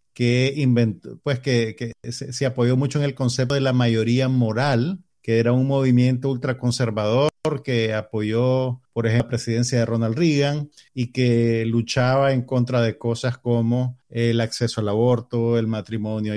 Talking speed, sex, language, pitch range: 160 wpm, male, Spanish, 115-140 Hz